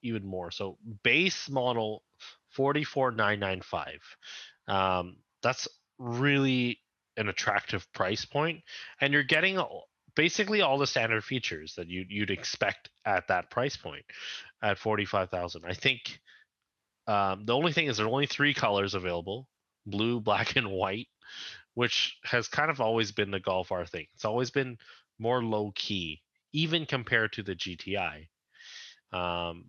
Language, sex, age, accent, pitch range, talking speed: English, male, 30-49, American, 95-135 Hz, 140 wpm